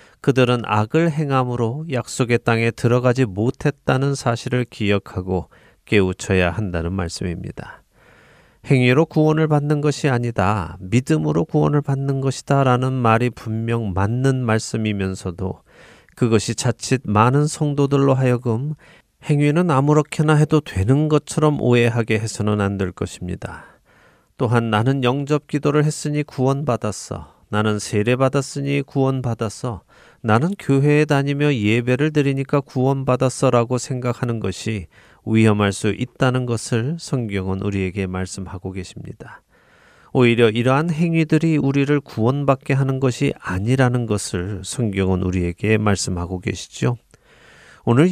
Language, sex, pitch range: Korean, male, 105-140 Hz